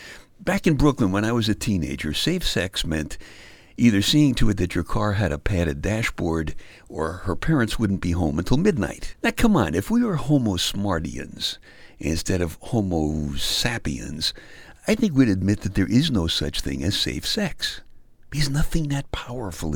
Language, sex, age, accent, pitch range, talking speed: English, male, 60-79, American, 80-130 Hz, 180 wpm